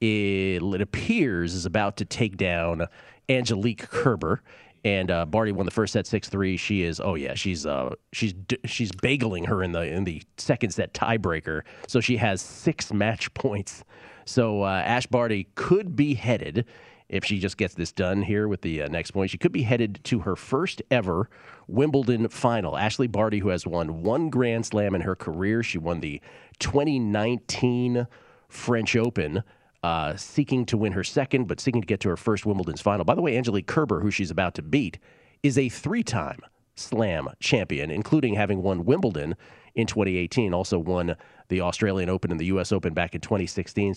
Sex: male